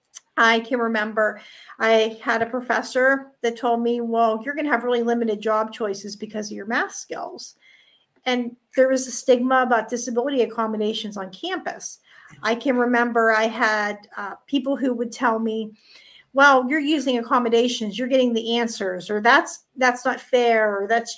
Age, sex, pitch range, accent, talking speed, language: 50-69, female, 225-270 Hz, American, 170 wpm, English